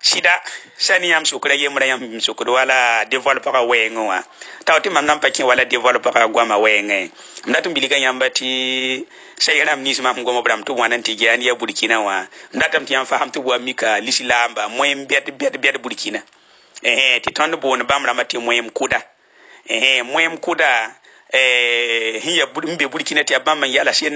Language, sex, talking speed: Arabic, male, 145 wpm